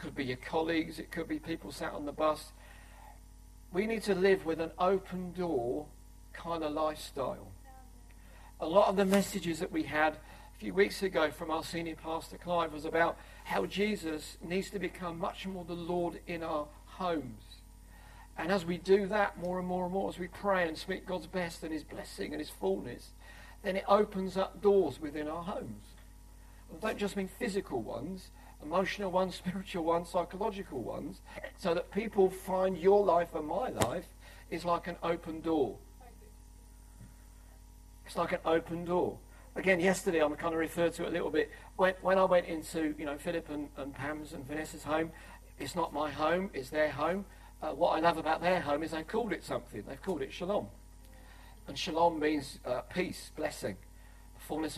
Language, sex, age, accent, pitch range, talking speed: English, male, 50-69, British, 145-185 Hz, 185 wpm